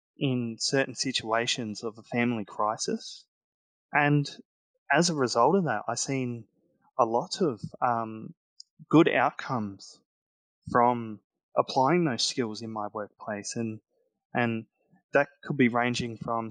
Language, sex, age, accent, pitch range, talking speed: English, male, 20-39, Australian, 110-130 Hz, 125 wpm